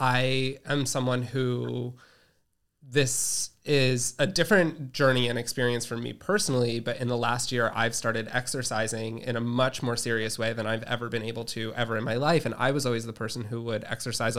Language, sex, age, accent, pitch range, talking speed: English, male, 20-39, American, 115-135 Hz, 195 wpm